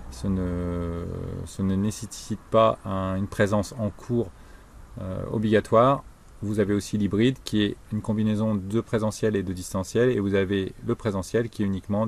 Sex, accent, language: male, French, French